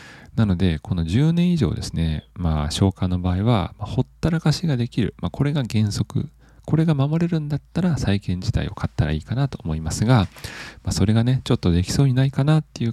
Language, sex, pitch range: Japanese, male, 90-130 Hz